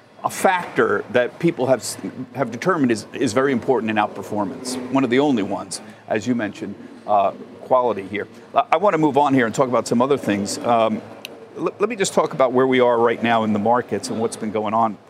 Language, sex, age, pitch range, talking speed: English, male, 50-69, 110-145 Hz, 225 wpm